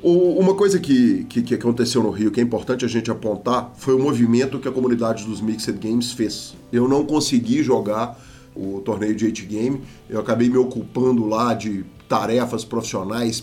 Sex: male